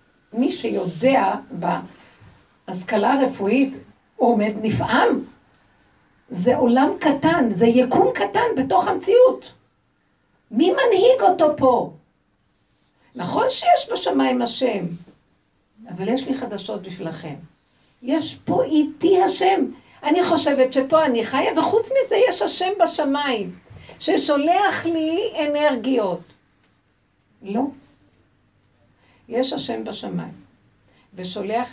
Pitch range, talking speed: 220-335 Hz, 95 wpm